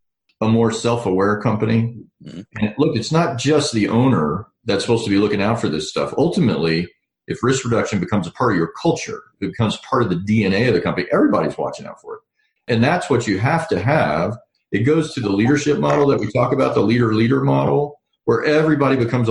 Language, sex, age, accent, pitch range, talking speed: English, male, 40-59, American, 100-120 Hz, 205 wpm